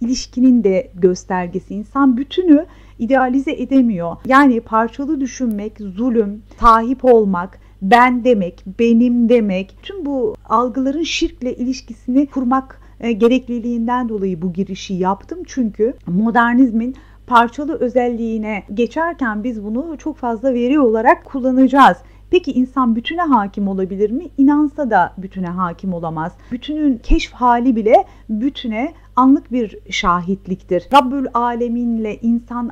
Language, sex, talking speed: Turkish, female, 115 wpm